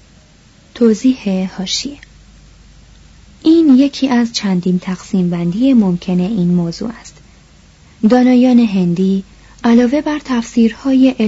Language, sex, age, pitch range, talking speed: Persian, female, 30-49, 185-250 Hz, 90 wpm